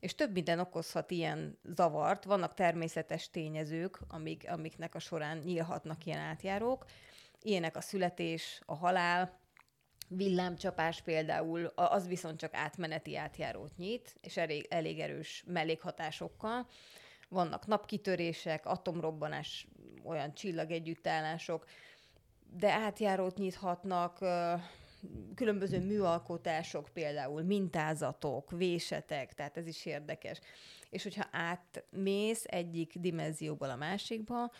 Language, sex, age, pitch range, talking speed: Hungarian, female, 30-49, 160-195 Hz, 100 wpm